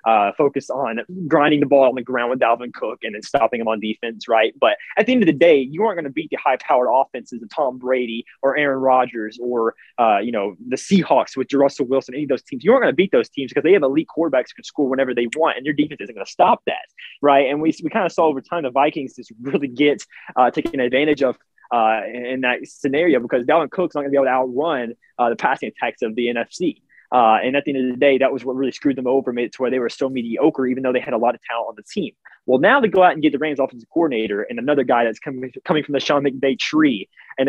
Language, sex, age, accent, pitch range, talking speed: English, male, 20-39, American, 125-150 Hz, 280 wpm